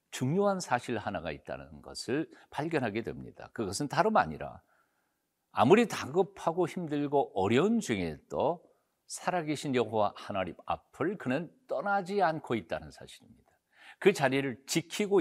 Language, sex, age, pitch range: Korean, male, 50-69, 125-210 Hz